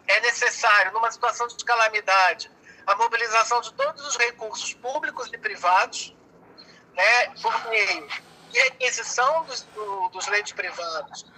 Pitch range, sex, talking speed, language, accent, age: 230-290 Hz, male, 130 wpm, Portuguese, Brazilian, 50-69